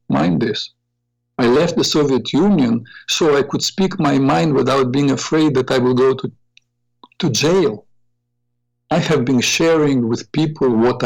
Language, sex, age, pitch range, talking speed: English, male, 50-69, 120-135 Hz, 165 wpm